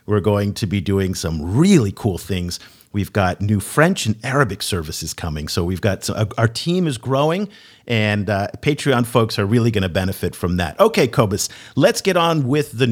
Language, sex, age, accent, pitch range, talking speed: English, male, 50-69, American, 105-145 Hz, 190 wpm